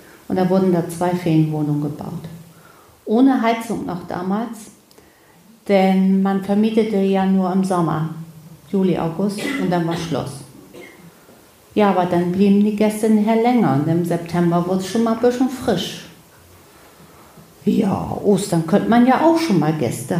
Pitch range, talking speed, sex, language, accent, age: 170-210 Hz, 150 wpm, female, German, German, 50-69